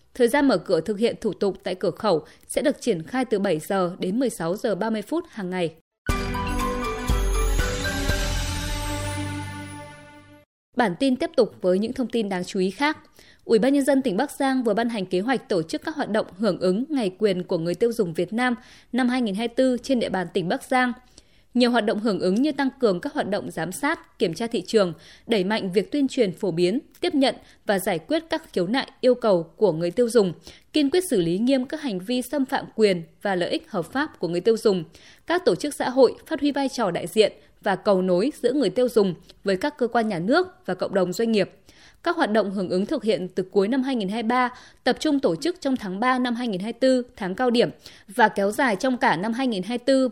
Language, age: Vietnamese, 20-39